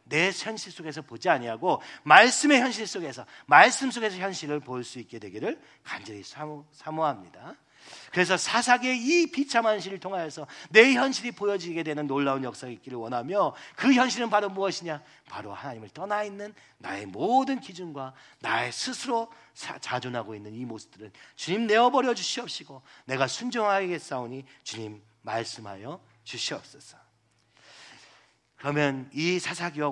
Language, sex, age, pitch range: Korean, male, 40-59, 120-185 Hz